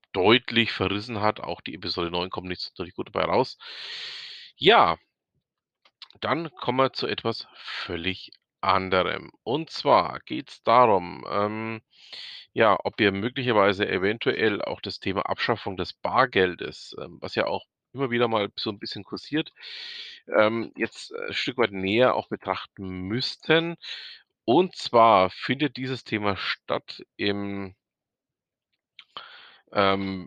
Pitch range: 95-140 Hz